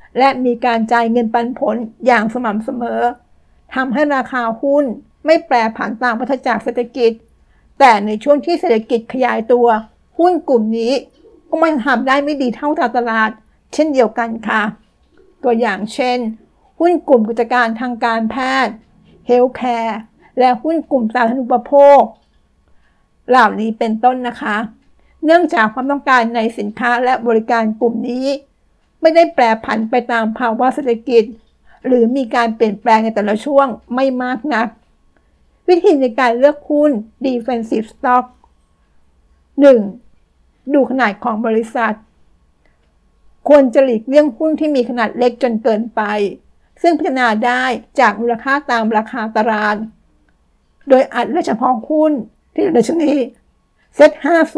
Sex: female